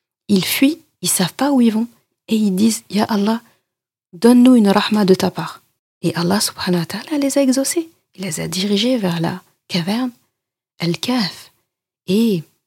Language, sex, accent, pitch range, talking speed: French, female, French, 175-205 Hz, 180 wpm